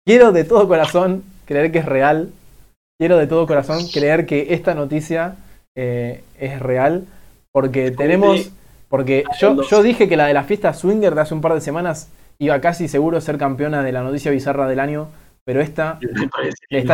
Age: 20-39